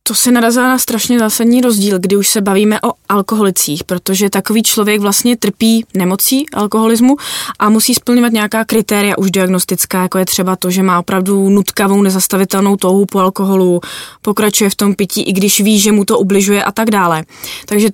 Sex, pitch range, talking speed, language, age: female, 190-210 Hz, 180 wpm, Czech, 20-39